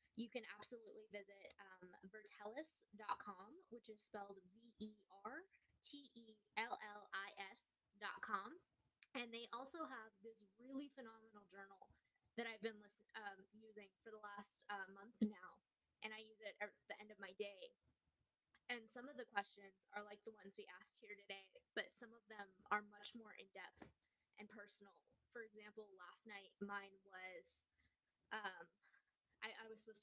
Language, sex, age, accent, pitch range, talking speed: English, female, 20-39, American, 195-230 Hz, 145 wpm